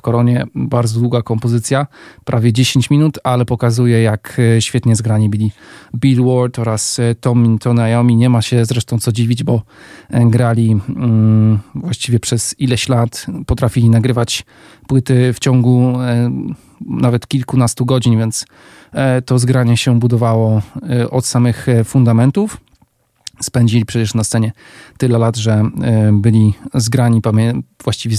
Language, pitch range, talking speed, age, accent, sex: Polish, 110-125 Hz, 125 wpm, 40-59, native, male